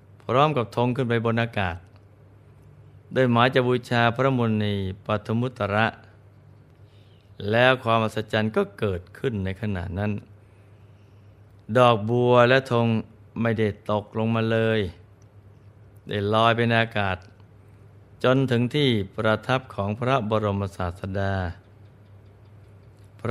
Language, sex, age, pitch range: Thai, male, 20-39, 100-115 Hz